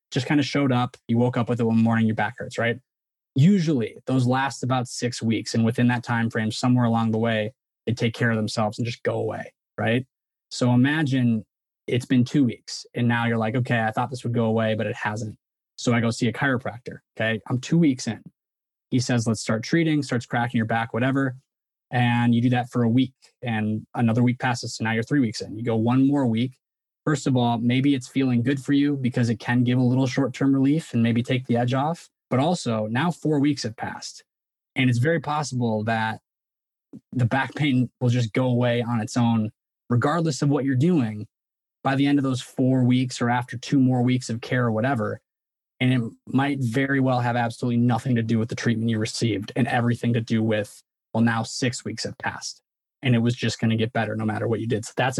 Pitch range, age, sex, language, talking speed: 115-130 Hz, 20-39, male, English, 230 wpm